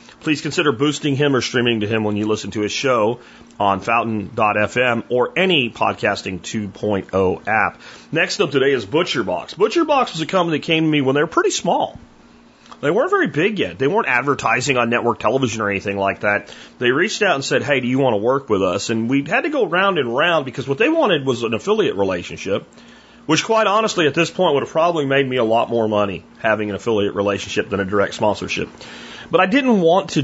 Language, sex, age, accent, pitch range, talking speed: English, male, 40-59, American, 110-170 Hz, 220 wpm